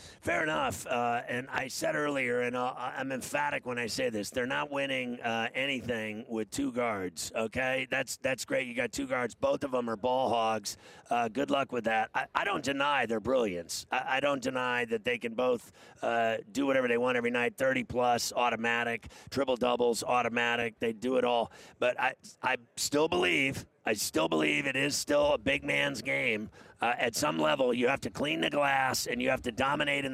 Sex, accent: male, American